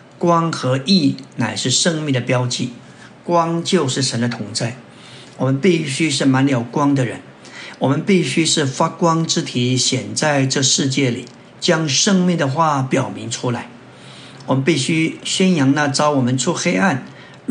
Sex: male